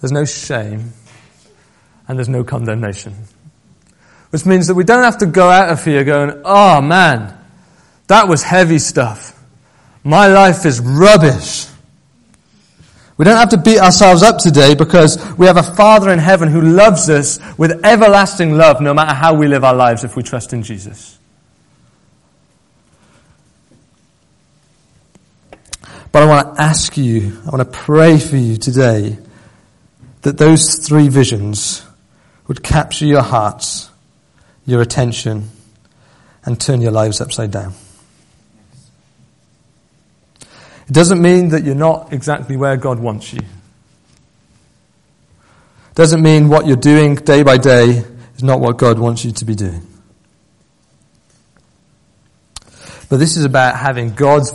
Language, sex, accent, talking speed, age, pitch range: English, male, British, 140 wpm, 40-59, 115-160 Hz